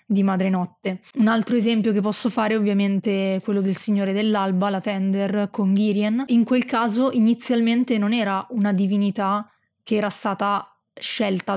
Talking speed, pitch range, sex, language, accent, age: 160 wpm, 200-220 Hz, female, Italian, native, 20-39